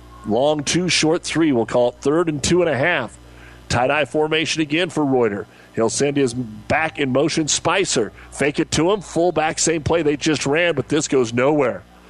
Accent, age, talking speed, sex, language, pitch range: American, 40-59, 200 wpm, male, English, 105-145 Hz